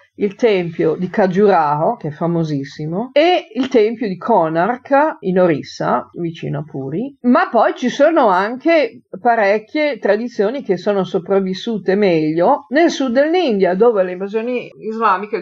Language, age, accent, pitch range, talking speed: Italian, 50-69, native, 175-230 Hz, 135 wpm